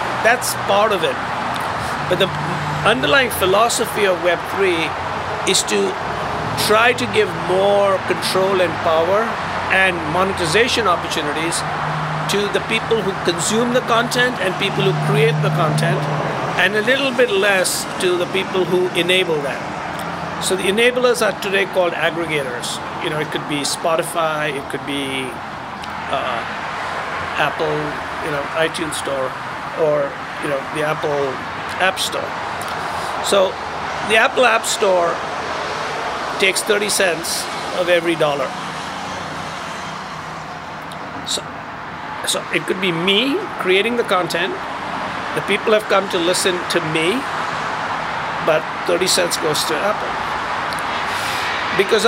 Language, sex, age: English, male, 60-79